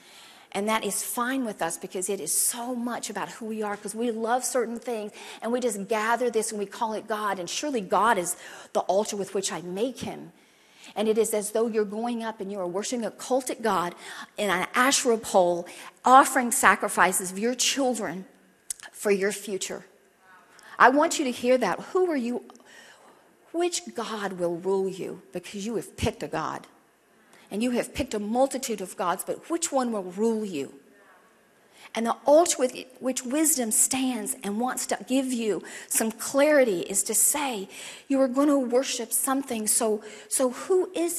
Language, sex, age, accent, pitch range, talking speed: English, female, 40-59, American, 205-265 Hz, 185 wpm